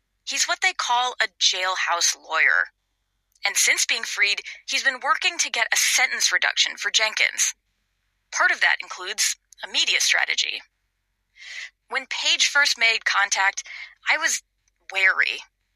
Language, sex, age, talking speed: English, female, 30-49, 135 wpm